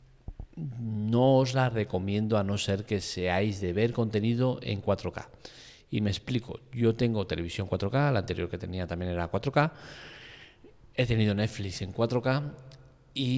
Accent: Spanish